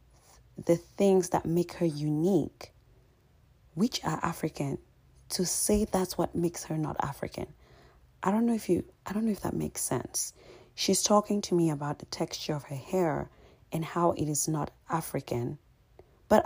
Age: 30-49